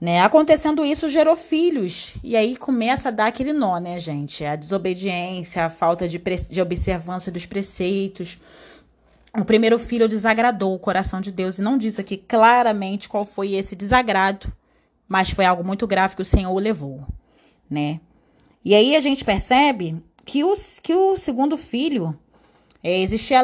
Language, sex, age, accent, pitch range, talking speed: Portuguese, female, 20-39, Brazilian, 180-245 Hz, 165 wpm